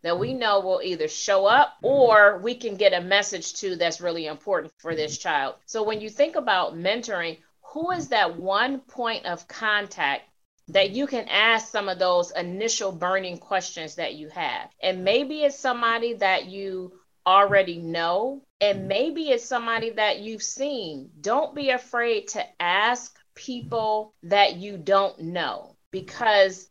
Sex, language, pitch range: female, English, 175-225 Hz